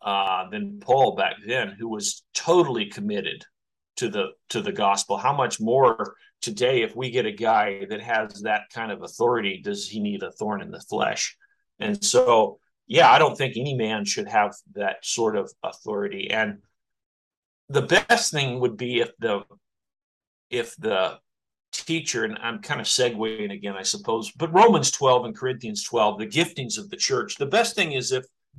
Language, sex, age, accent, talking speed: English, male, 50-69, American, 180 wpm